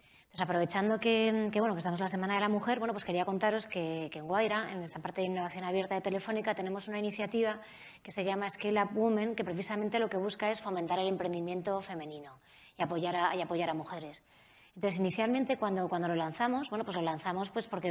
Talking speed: 225 wpm